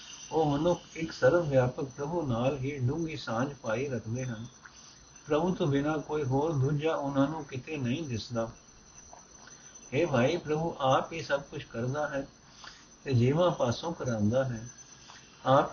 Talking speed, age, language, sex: 135 wpm, 60-79, Punjabi, male